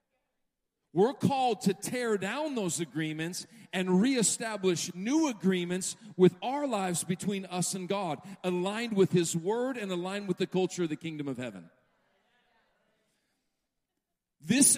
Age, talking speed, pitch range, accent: 50-69, 135 wpm, 170-245 Hz, American